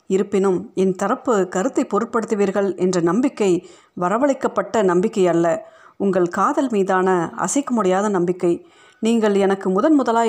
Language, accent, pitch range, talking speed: Tamil, native, 185-230 Hz, 115 wpm